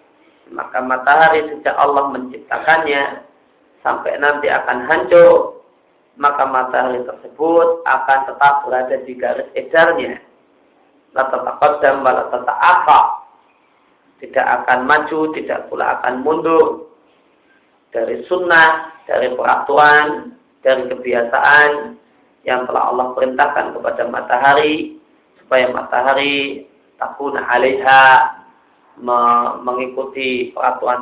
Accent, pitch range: native, 135-215 Hz